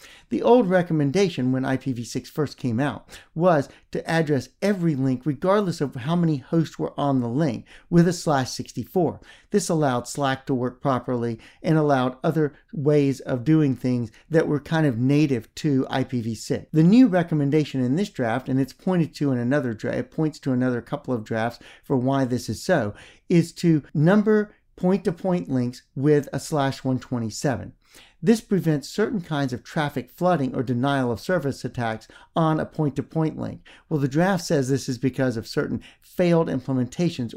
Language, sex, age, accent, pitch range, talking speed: English, male, 50-69, American, 125-165 Hz, 170 wpm